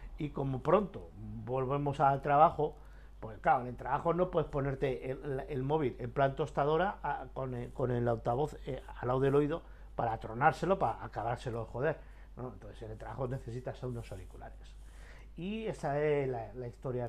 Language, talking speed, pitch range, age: Spanish, 175 wpm, 115-140 Hz, 50-69